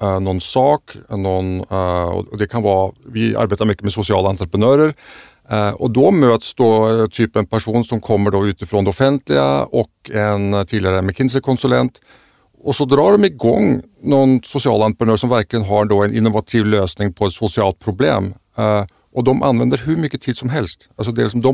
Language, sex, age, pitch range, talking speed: Swedish, male, 50-69, 105-130 Hz, 175 wpm